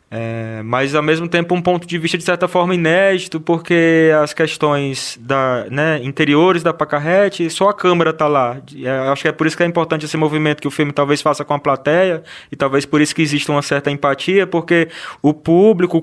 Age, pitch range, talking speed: 20-39, 145-180 Hz, 215 wpm